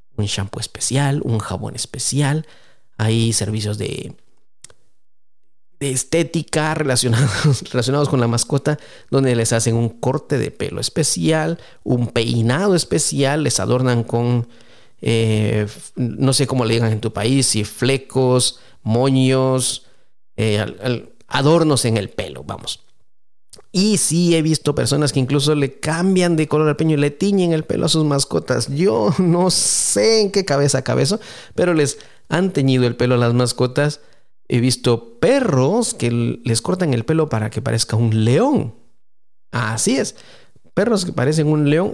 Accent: Mexican